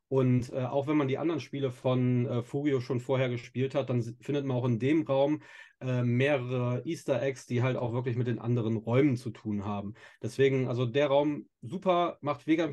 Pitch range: 120-145 Hz